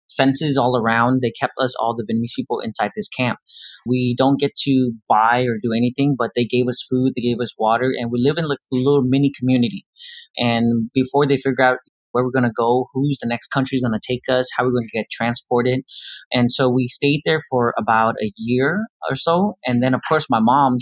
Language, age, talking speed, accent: English, 30-49, 235 wpm, American